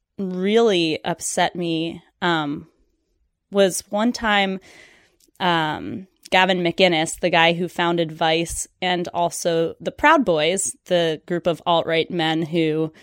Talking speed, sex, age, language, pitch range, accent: 120 wpm, female, 20-39, English, 165-200 Hz, American